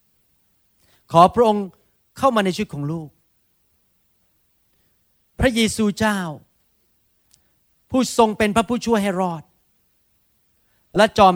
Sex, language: male, Thai